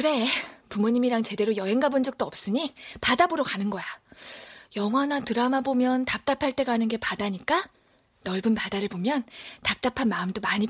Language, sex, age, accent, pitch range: Korean, female, 20-39, native, 210-290 Hz